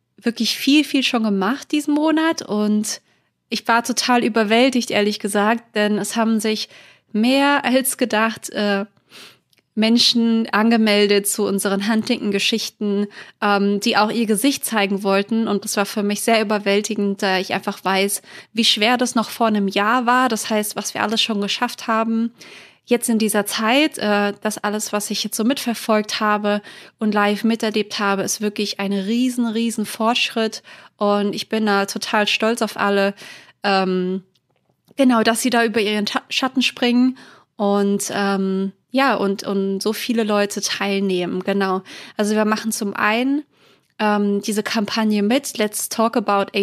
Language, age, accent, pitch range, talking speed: German, 20-39, German, 200-230 Hz, 160 wpm